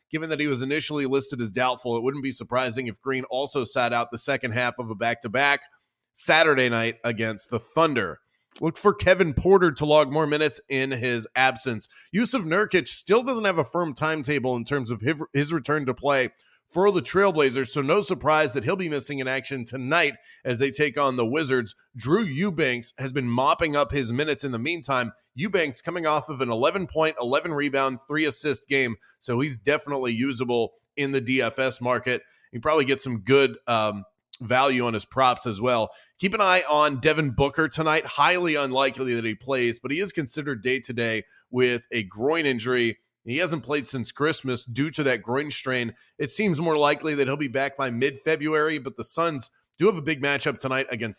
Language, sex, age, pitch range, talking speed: English, male, 30-49, 125-155 Hz, 190 wpm